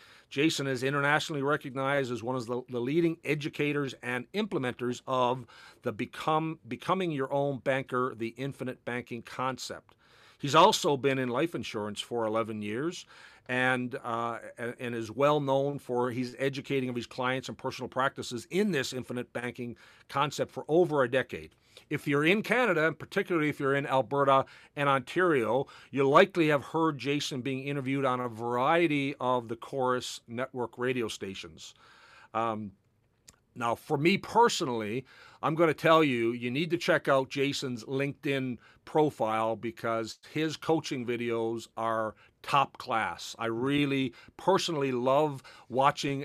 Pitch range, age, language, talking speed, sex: 120-145 Hz, 50-69, English, 150 wpm, male